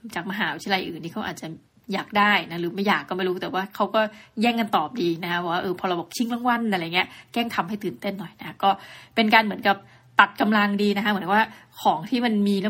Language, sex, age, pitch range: Thai, female, 20-39, 185-225 Hz